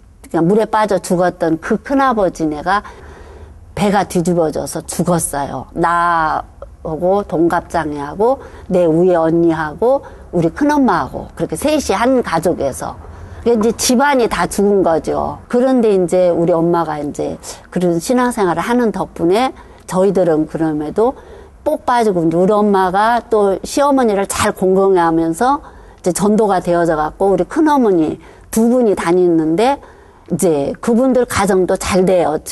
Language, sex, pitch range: Korean, female, 170-225 Hz